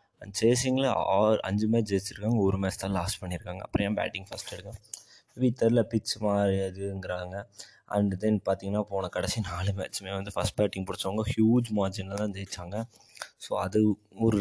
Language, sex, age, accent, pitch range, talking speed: Tamil, male, 20-39, native, 95-115 Hz, 145 wpm